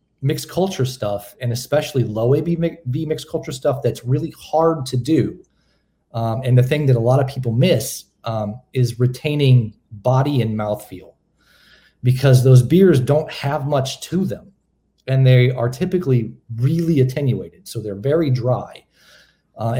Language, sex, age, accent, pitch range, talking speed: English, male, 40-59, American, 120-150 Hz, 155 wpm